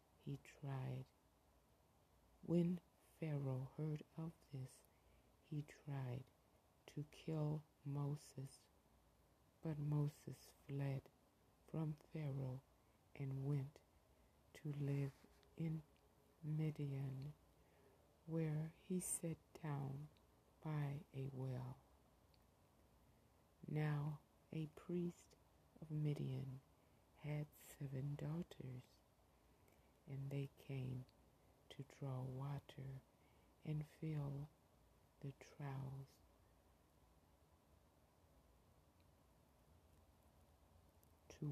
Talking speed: 70 wpm